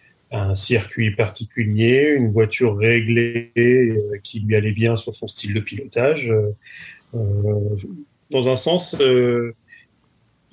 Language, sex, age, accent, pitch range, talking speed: French, male, 40-59, French, 115-130 Hz, 120 wpm